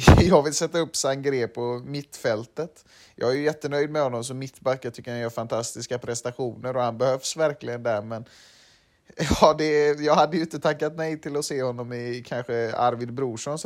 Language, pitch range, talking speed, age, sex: Swedish, 120-145 Hz, 195 wpm, 30-49, male